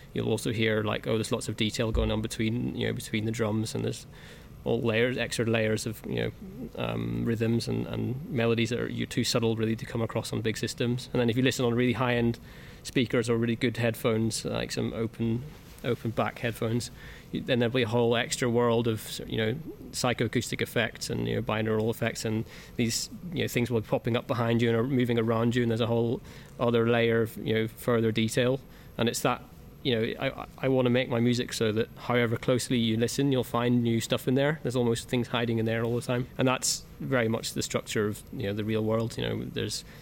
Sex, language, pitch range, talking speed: male, English, 110-125 Hz, 230 wpm